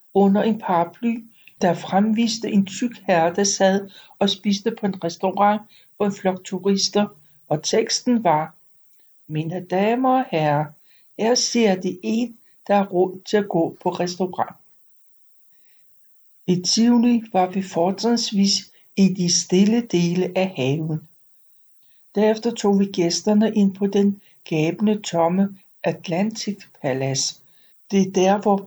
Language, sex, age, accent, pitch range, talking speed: Danish, male, 60-79, native, 175-210 Hz, 130 wpm